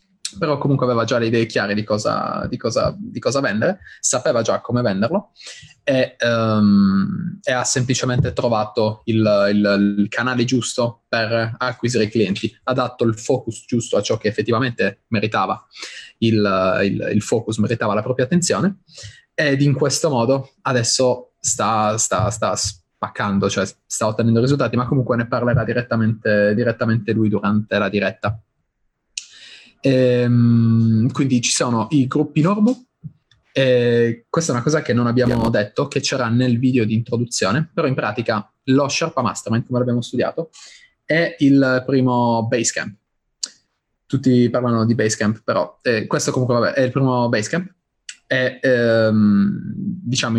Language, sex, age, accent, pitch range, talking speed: Italian, male, 20-39, native, 110-135 Hz, 150 wpm